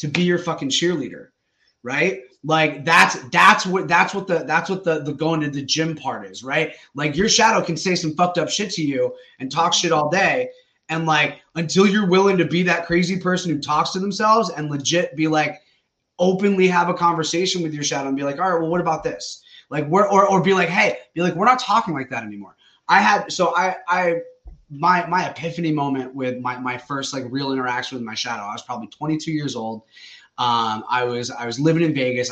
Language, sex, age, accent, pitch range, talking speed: English, male, 20-39, American, 130-170 Hz, 225 wpm